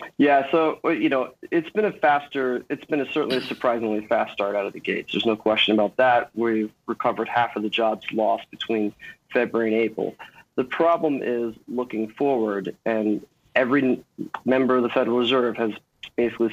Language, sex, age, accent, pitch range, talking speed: English, male, 30-49, American, 110-130 Hz, 180 wpm